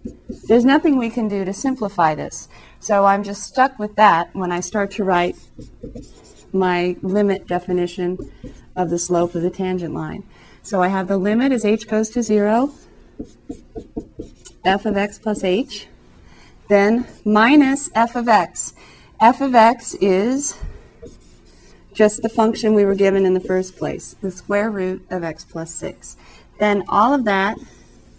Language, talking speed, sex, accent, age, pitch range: English, 160 wpm, female, American, 30-49, 180-225 Hz